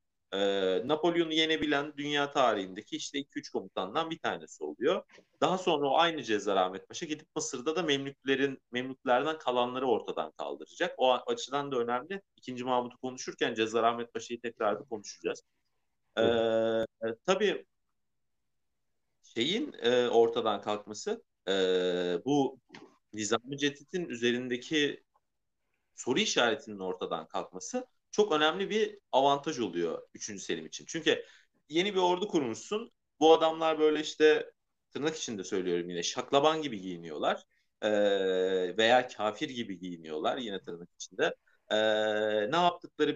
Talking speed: 120 wpm